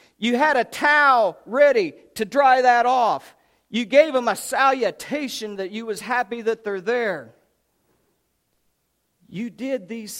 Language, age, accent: English, 50-69, American